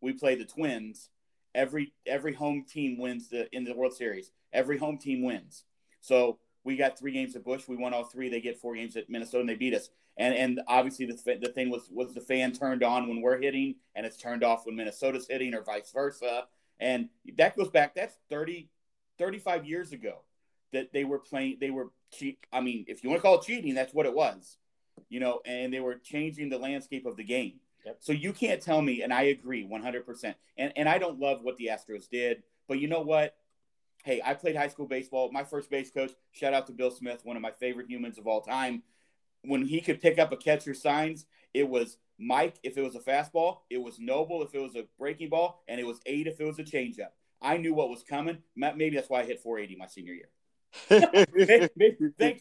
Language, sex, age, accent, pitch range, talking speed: English, male, 40-59, American, 125-155 Hz, 225 wpm